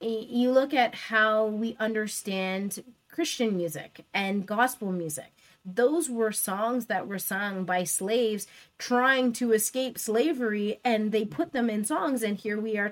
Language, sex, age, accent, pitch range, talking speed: English, female, 20-39, American, 190-245 Hz, 155 wpm